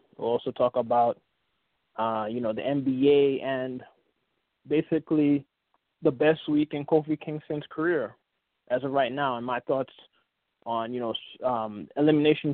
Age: 20-39